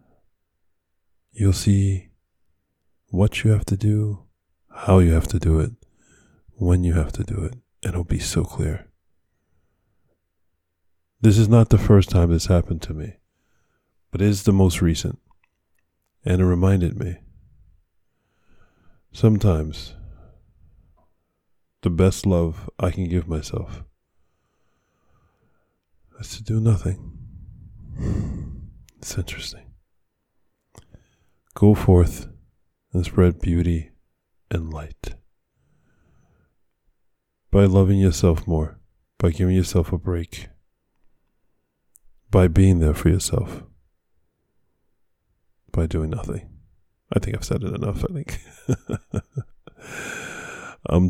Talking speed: 105 wpm